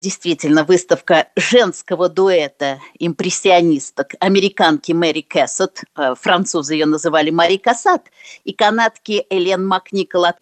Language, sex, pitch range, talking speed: Russian, female, 195-290 Hz, 100 wpm